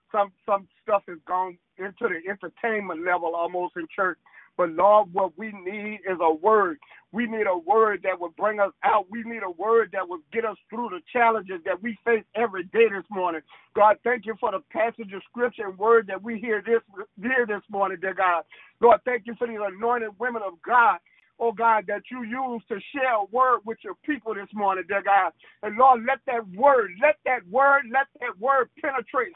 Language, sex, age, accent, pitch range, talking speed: English, male, 50-69, American, 200-260 Hz, 210 wpm